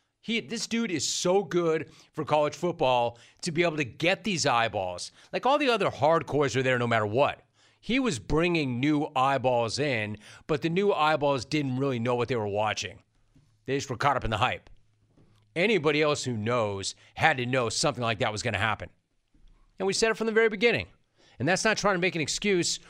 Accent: American